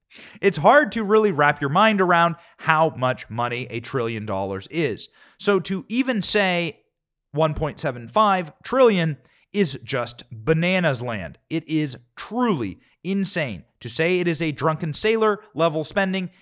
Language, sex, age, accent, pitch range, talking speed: English, male, 30-49, American, 130-175 Hz, 140 wpm